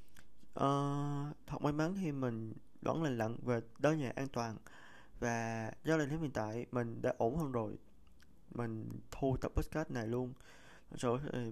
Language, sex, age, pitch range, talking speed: Vietnamese, male, 20-39, 115-140 Hz, 165 wpm